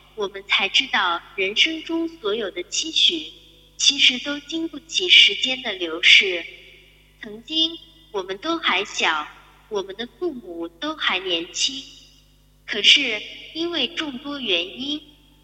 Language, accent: Chinese, native